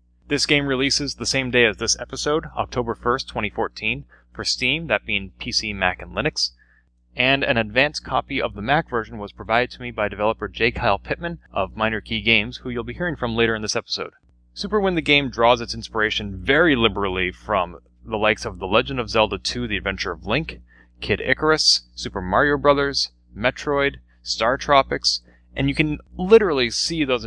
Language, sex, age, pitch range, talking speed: English, male, 30-49, 95-125 Hz, 185 wpm